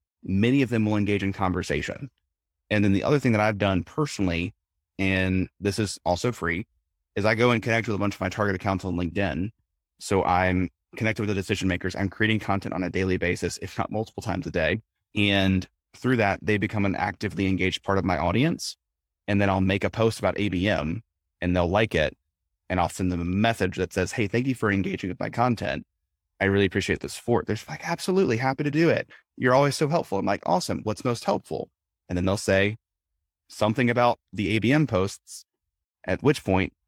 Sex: male